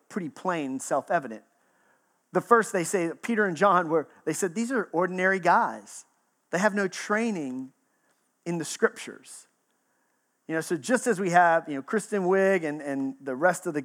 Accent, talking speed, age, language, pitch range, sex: American, 180 wpm, 40-59, English, 160-210 Hz, male